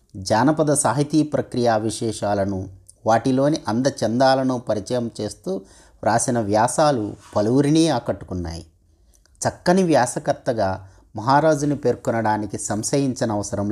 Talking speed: 75 wpm